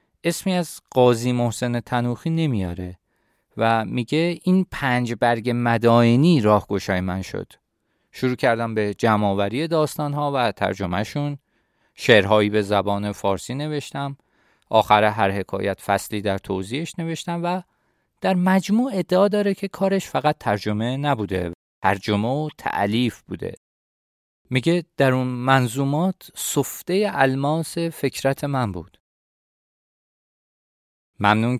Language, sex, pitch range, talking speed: Persian, male, 105-135 Hz, 110 wpm